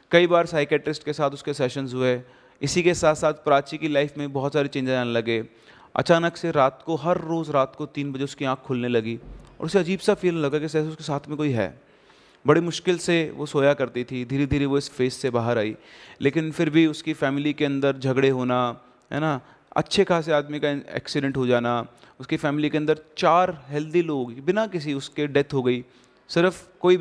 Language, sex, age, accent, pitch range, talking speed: Hindi, male, 30-49, native, 135-165 Hz, 210 wpm